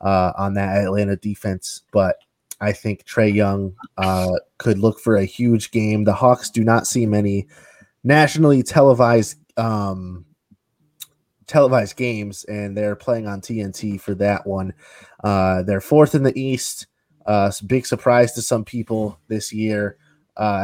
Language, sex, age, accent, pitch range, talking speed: English, male, 20-39, American, 95-120 Hz, 150 wpm